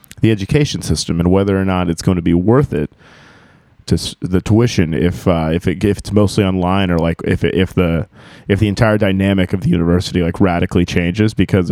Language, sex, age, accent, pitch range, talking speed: English, male, 30-49, American, 90-110 Hz, 210 wpm